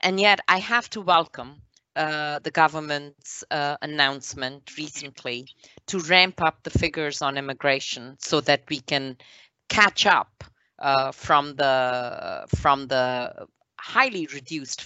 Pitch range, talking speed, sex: 125-155 Hz, 130 wpm, female